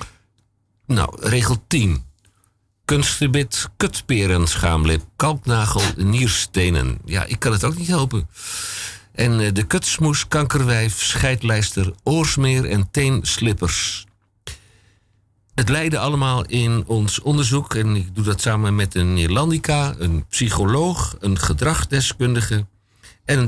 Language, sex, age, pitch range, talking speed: Dutch, male, 50-69, 95-120 Hz, 105 wpm